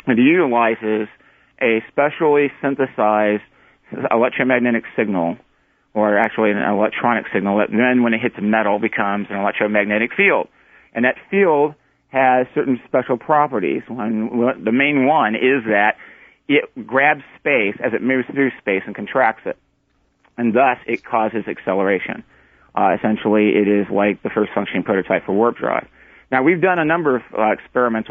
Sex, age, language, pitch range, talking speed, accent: male, 40-59, English, 105-130 Hz, 150 wpm, American